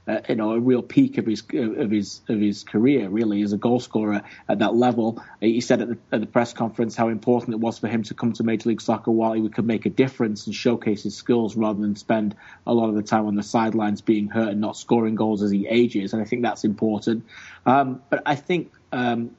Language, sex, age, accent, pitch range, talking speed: English, male, 30-49, British, 110-120 Hz, 255 wpm